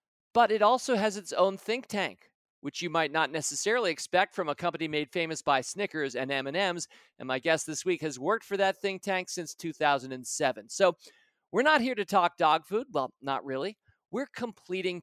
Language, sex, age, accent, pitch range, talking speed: English, male, 40-59, American, 155-215 Hz, 195 wpm